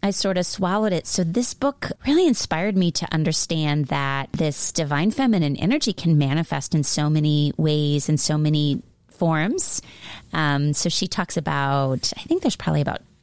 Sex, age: female, 30-49